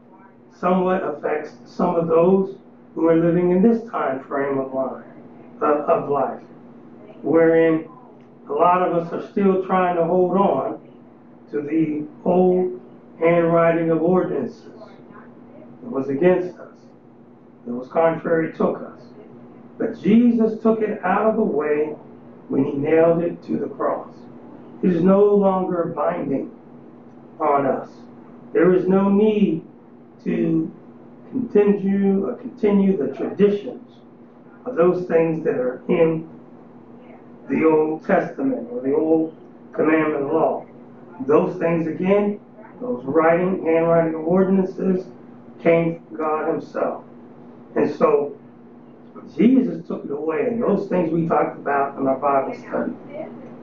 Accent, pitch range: American, 160-195 Hz